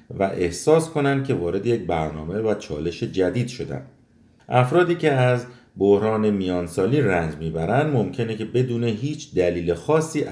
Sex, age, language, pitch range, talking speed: male, 50-69, Persian, 90-135 Hz, 140 wpm